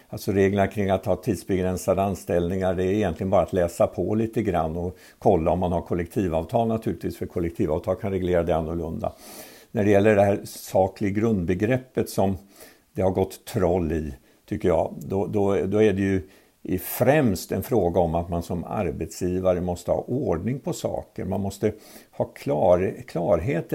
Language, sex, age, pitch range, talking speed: Swedish, male, 50-69, 85-110 Hz, 170 wpm